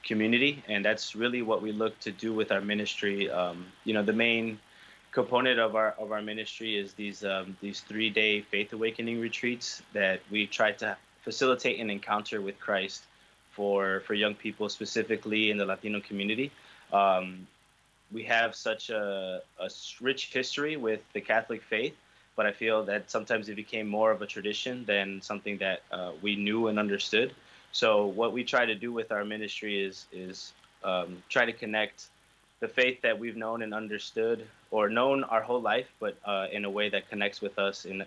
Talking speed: 185 wpm